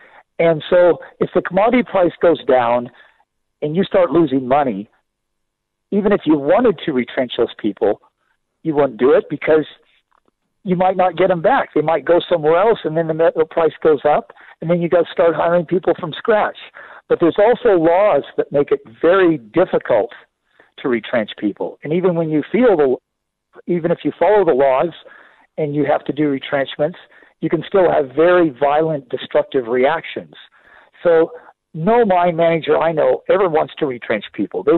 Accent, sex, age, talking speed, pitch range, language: American, male, 50-69, 180 wpm, 140-185 Hz, English